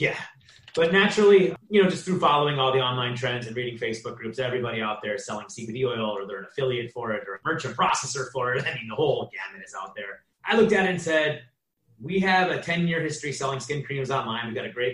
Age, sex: 30-49, male